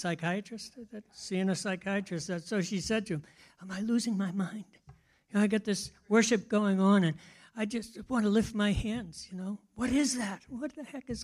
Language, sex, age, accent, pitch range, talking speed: English, male, 60-79, American, 175-245 Hz, 200 wpm